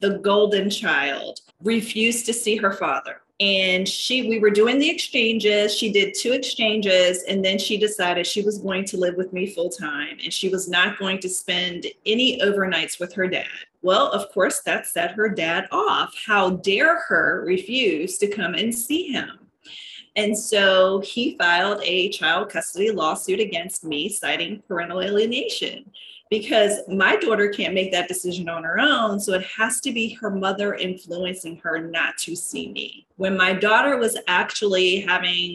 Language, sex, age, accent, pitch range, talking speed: English, female, 30-49, American, 180-225 Hz, 175 wpm